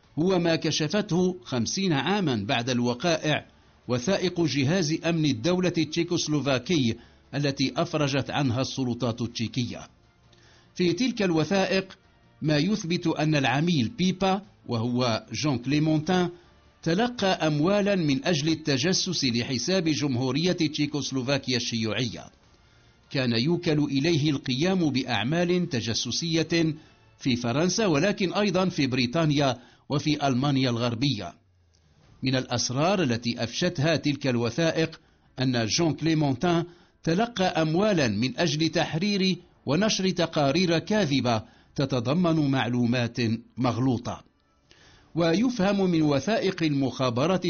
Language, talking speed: English, 95 wpm